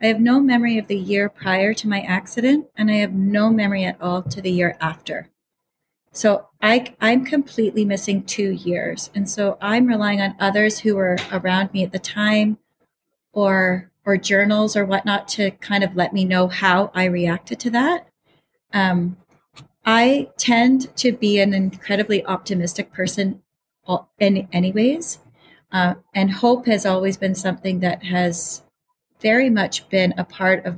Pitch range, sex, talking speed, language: 185-215 Hz, female, 165 wpm, English